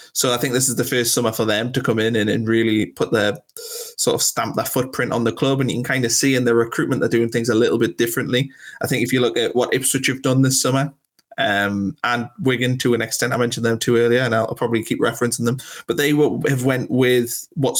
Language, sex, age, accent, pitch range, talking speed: English, male, 20-39, British, 115-130 Hz, 265 wpm